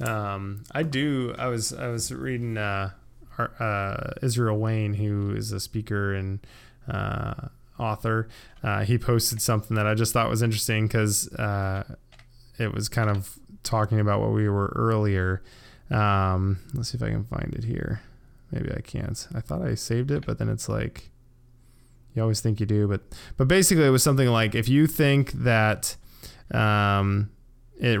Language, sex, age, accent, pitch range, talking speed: English, male, 20-39, American, 105-120 Hz, 175 wpm